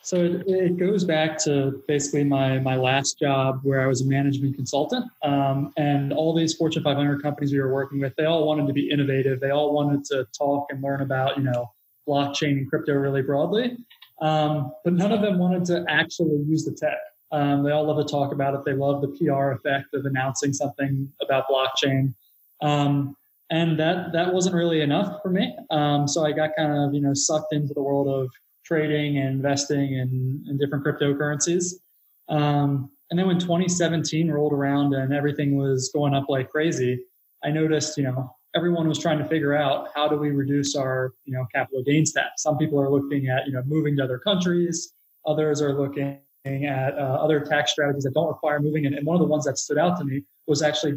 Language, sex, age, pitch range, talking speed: English, male, 20-39, 140-155 Hz, 205 wpm